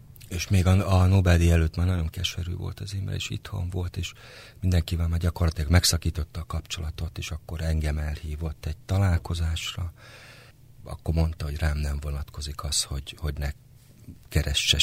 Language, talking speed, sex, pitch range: Hungarian, 160 wpm, male, 80-115 Hz